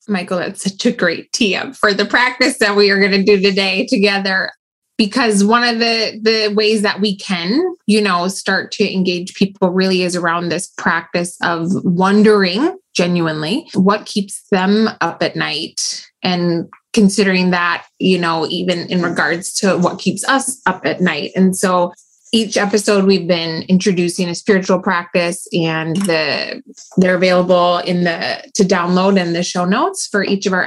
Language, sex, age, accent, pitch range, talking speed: English, female, 20-39, American, 180-215 Hz, 170 wpm